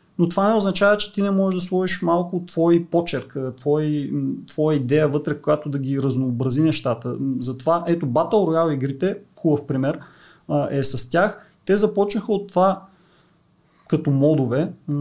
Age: 30-49